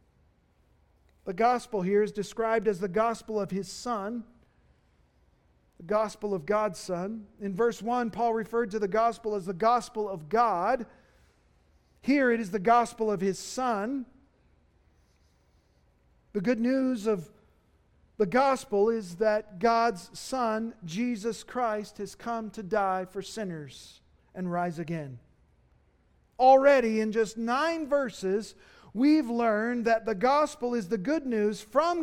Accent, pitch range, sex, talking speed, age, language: American, 195-250 Hz, male, 135 wpm, 50-69, English